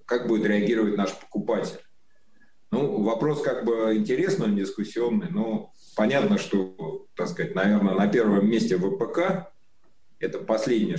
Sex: male